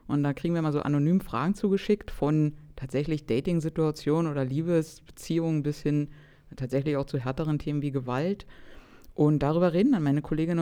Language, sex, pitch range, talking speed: German, female, 140-170 Hz, 165 wpm